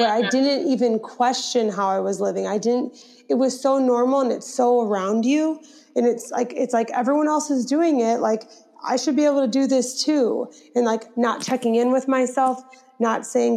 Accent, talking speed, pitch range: American, 210 wpm, 210-255 Hz